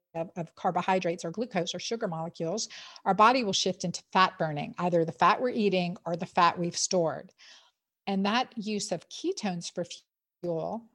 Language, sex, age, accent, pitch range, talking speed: English, female, 50-69, American, 175-215 Hz, 175 wpm